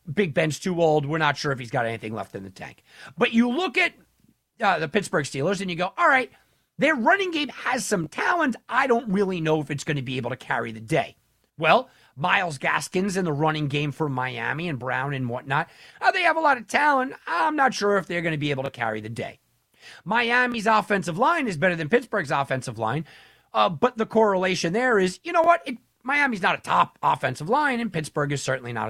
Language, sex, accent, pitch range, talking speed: English, male, American, 140-225 Hz, 230 wpm